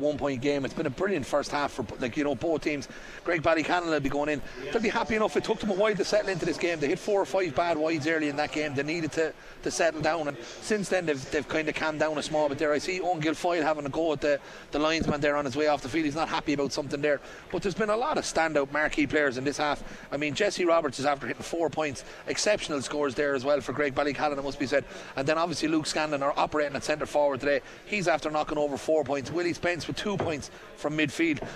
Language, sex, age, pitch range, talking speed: English, male, 30-49, 140-165 Hz, 275 wpm